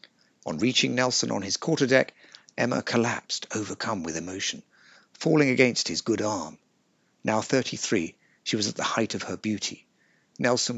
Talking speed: 150 wpm